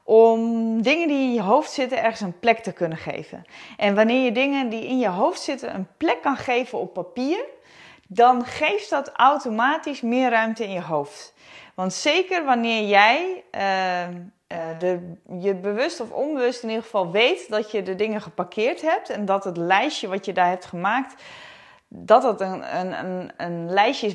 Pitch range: 185-255 Hz